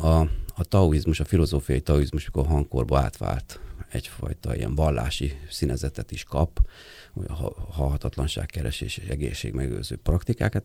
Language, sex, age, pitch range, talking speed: Hungarian, male, 40-59, 70-85 Hz, 125 wpm